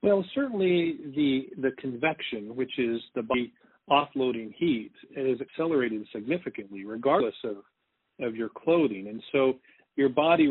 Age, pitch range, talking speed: 40-59, 120-150 Hz, 130 wpm